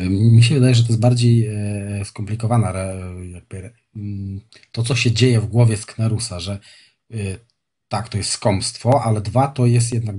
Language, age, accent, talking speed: Polish, 40-59, native, 145 wpm